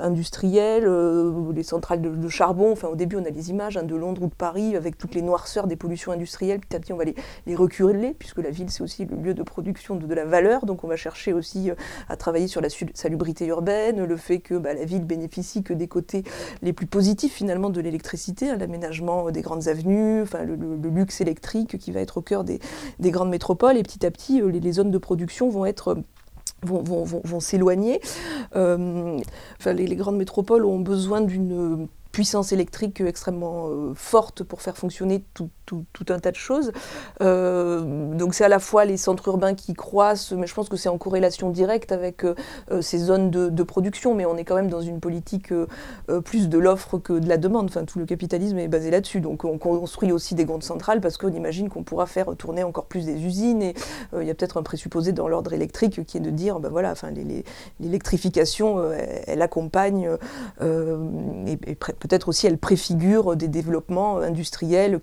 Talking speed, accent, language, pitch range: 210 wpm, French, French, 170-195 Hz